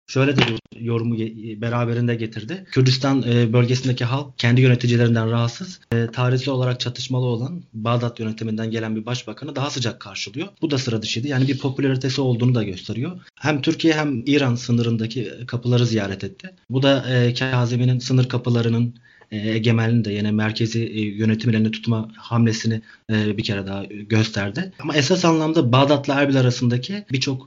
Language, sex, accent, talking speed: Turkish, male, native, 140 wpm